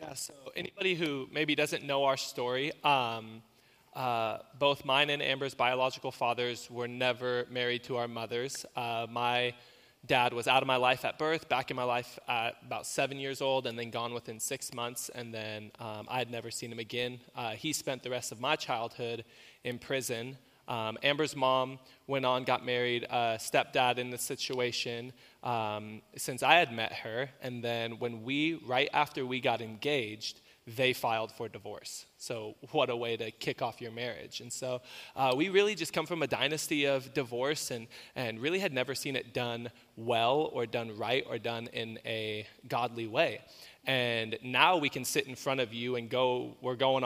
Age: 20-39